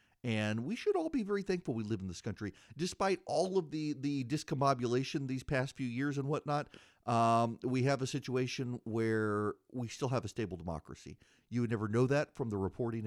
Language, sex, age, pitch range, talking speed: English, male, 40-59, 105-140 Hz, 200 wpm